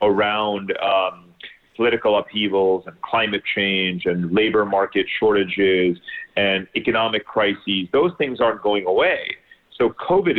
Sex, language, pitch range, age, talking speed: male, English, 95-115 Hz, 30-49, 120 wpm